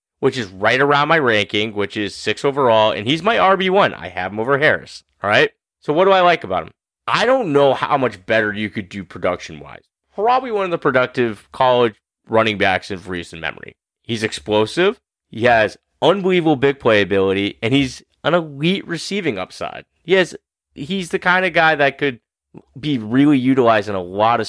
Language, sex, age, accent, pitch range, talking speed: English, male, 30-49, American, 110-160 Hz, 195 wpm